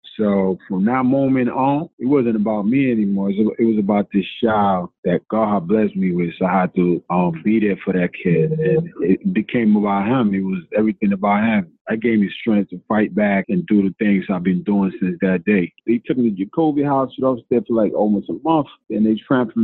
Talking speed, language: 230 wpm, English